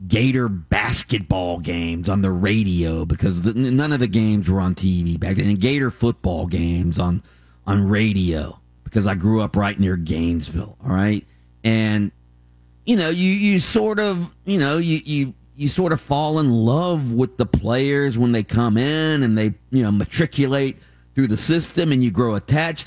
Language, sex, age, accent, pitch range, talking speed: English, male, 40-59, American, 105-160 Hz, 175 wpm